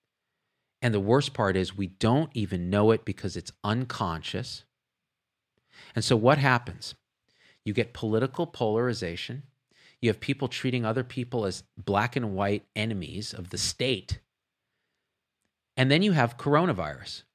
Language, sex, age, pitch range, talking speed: English, male, 40-59, 105-130 Hz, 140 wpm